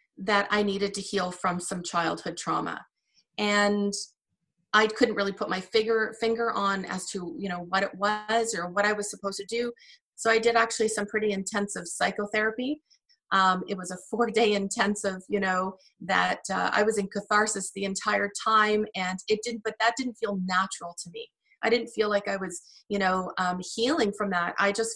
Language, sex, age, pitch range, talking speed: English, female, 30-49, 195-220 Hz, 195 wpm